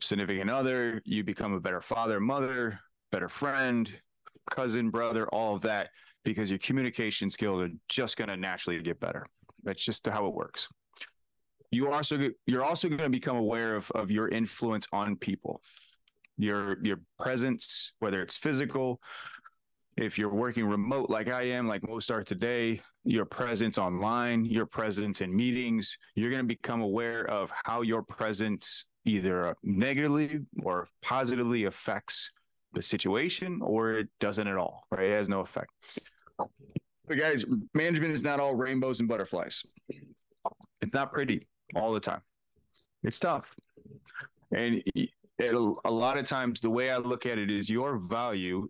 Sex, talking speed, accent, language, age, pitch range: male, 155 wpm, American, English, 30-49, 105-125 Hz